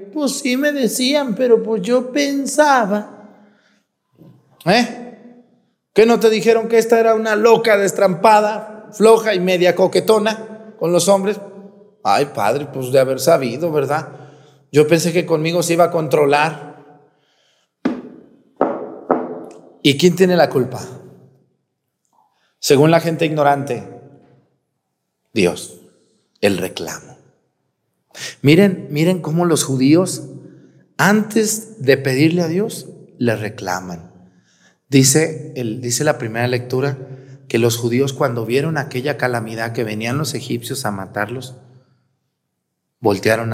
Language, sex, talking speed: Spanish, male, 115 wpm